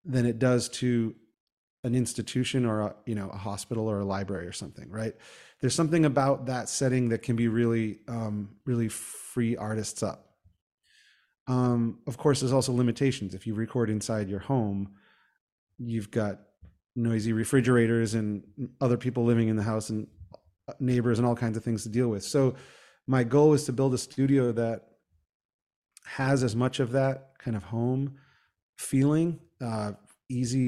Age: 30-49